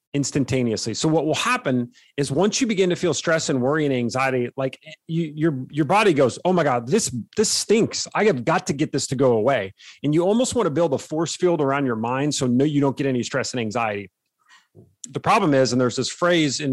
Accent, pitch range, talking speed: American, 130-160 Hz, 235 wpm